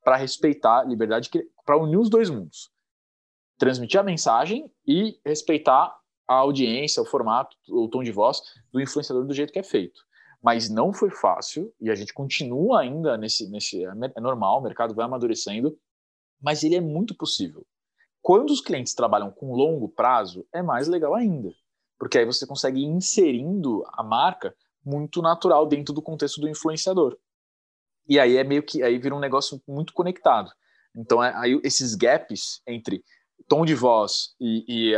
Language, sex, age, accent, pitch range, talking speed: Portuguese, male, 20-39, Brazilian, 125-185 Hz, 170 wpm